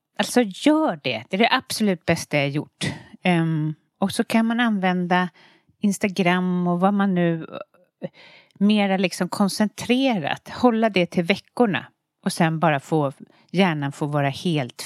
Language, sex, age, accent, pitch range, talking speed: Swedish, female, 40-59, native, 145-195 Hz, 150 wpm